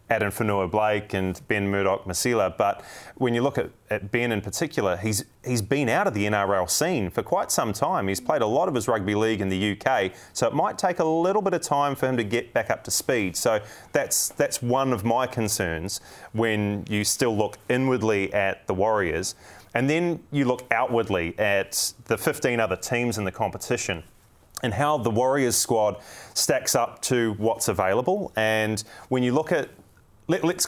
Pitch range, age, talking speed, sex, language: 100-120 Hz, 30-49, 195 wpm, male, English